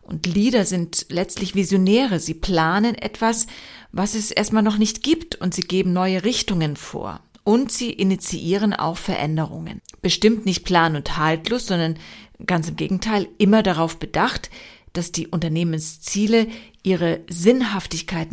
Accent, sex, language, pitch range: German, female, German, 175-215 Hz